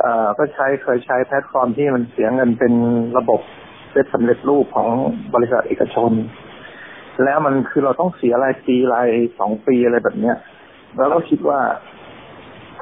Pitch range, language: 120-150 Hz, Thai